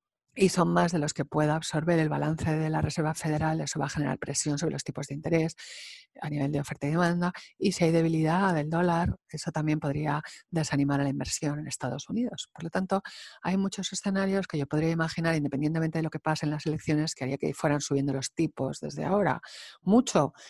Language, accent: English, Spanish